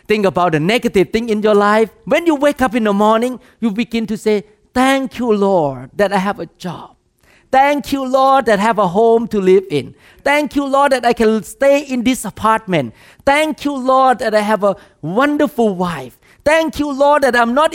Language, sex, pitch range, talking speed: English, male, 195-265 Hz, 215 wpm